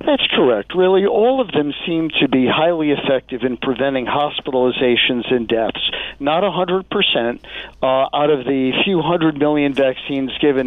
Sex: male